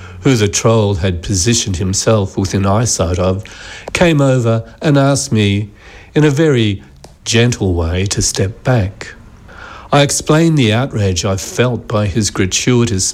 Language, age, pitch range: English, 50-69, 95-115 Hz